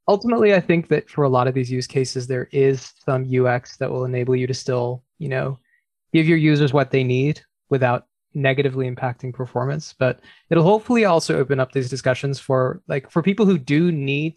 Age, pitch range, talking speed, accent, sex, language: 20-39, 130-165 Hz, 205 wpm, American, male, English